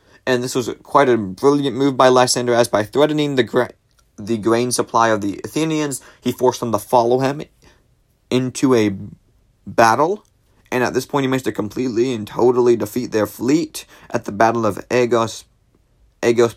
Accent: American